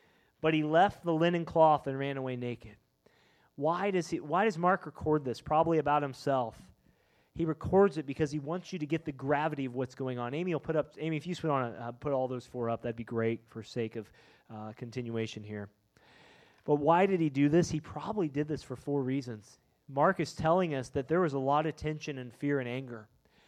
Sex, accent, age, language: male, American, 30-49, English